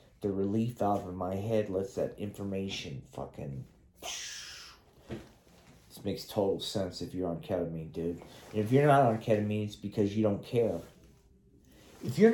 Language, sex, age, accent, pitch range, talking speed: English, male, 40-59, American, 100-125 Hz, 155 wpm